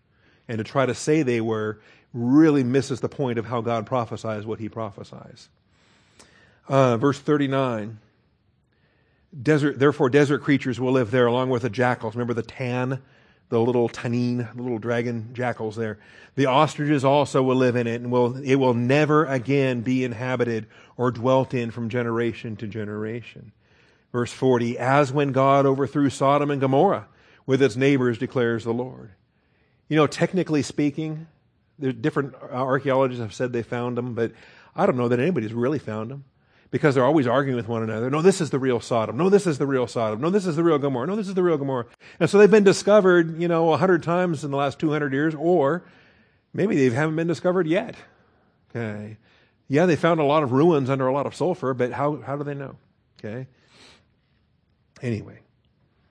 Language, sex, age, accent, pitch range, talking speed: English, male, 40-59, American, 120-145 Hz, 190 wpm